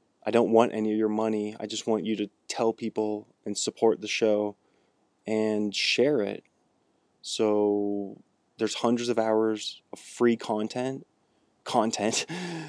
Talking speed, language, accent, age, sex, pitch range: 140 wpm, English, American, 20-39, male, 110-130 Hz